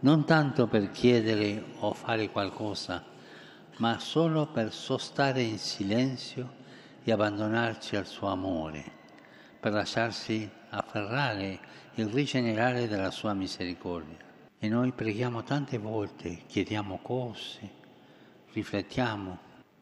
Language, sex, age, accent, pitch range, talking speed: Italian, male, 60-79, native, 95-120 Hz, 105 wpm